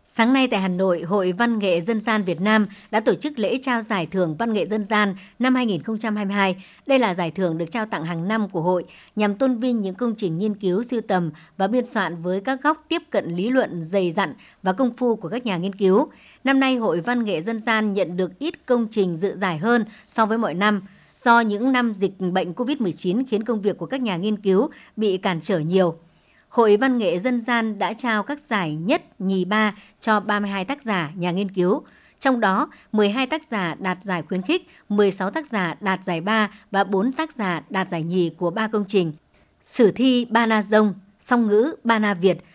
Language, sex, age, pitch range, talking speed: Vietnamese, male, 60-79, 185-235 Hz, 225 wpm